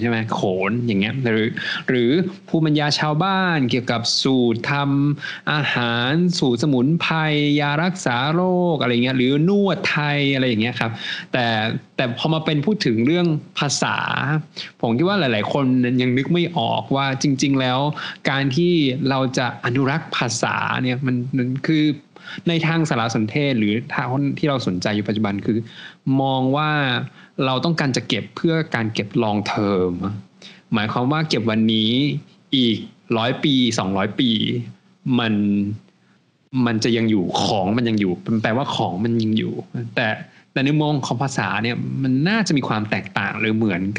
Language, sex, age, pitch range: Thai, male, 20-39, 110-150 Hz